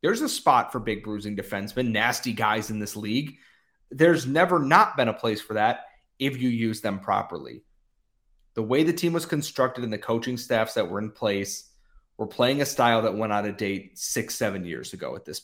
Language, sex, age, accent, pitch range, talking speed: English, male, 30-49, American, 110-135 Hz, 210 wpm